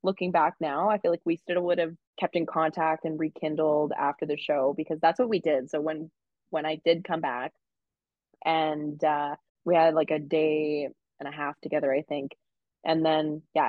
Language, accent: English, American